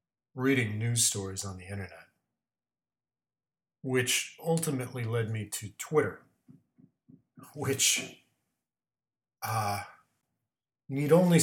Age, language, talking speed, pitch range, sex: 40-59, English, 85 wpm, 100-125 Hz, male